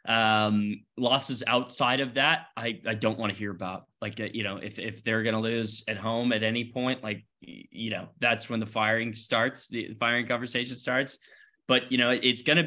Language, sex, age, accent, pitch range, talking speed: English, male, 20-39, American, 110-130 Hz, 210 wpm